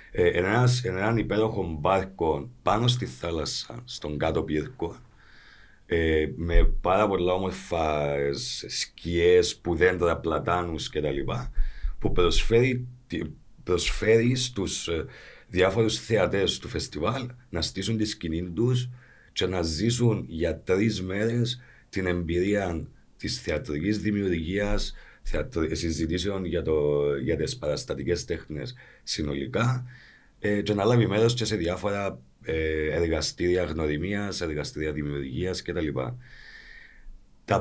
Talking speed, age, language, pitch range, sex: 100 wpm, 50-69, Greek, 80-115 Hz, male